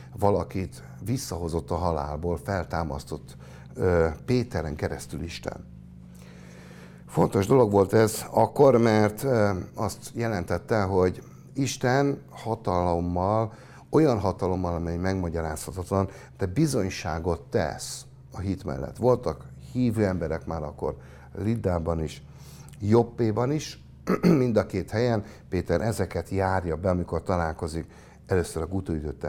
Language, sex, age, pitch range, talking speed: Hungarian, male, 60-79, 75-110 Hz, 110 wpm